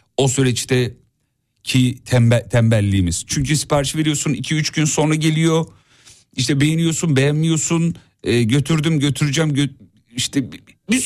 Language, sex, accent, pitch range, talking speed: Turkish, male, native, 105-160 Hz, 115 wpm